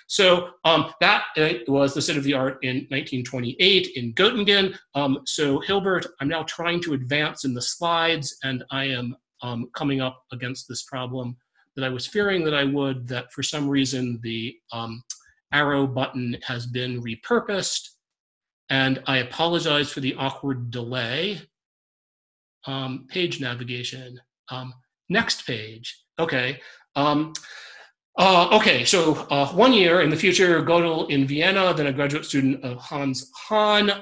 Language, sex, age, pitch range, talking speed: English, male, 40-59, 130-175 Hz, 150 wpm